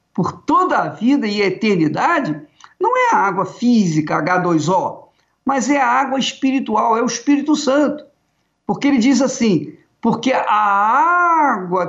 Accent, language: Brazilian, Portuguese